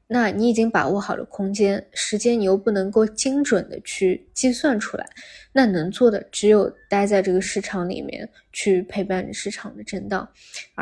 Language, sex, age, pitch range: Chinese, female, 20-39, 190-220 Hz